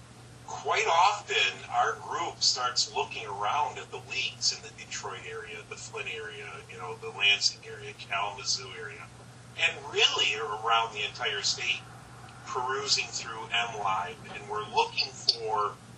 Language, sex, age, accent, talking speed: English, male, 40-59, American, 145 wpm